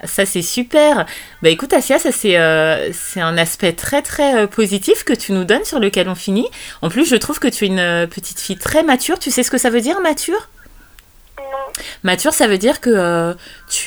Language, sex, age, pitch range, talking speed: French, female, 30-49, 175-240 Hz, 225 wpm